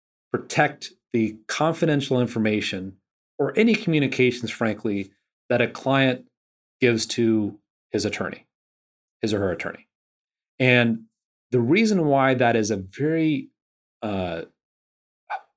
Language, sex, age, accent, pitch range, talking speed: English, male, 30-49, American, 115-150 Hz, 110 wpm